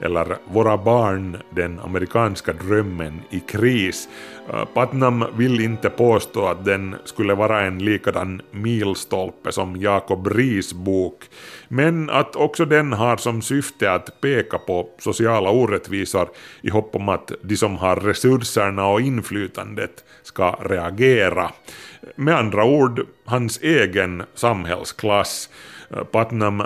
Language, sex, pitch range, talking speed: Swedish, male, 95-120 Hz, 120 wpm